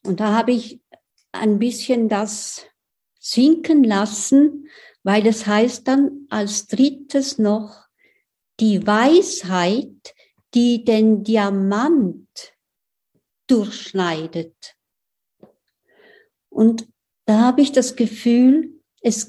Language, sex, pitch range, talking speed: German, female, 195-250 Hz, 90 wpm